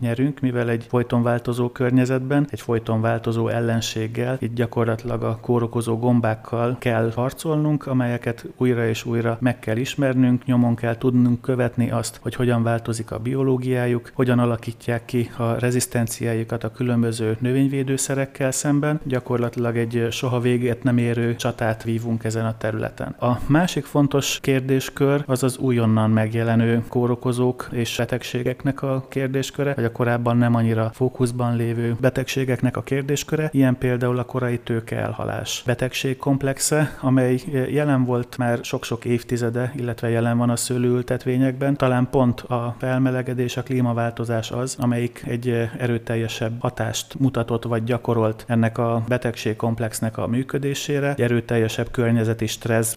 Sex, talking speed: male, 130 wpm